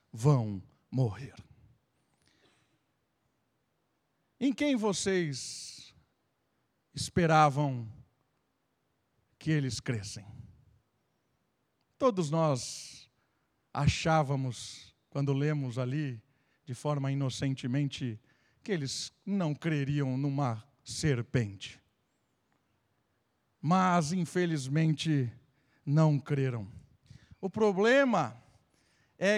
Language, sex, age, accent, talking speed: Portuguese, male, 50-69, Brazilian, 65 wpm